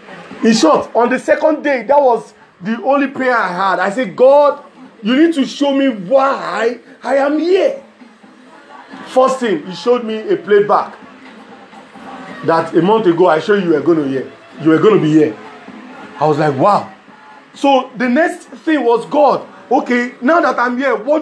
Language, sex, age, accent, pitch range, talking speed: English, male, 40-59, Nigerian, 210-270 Hz, 180 wpm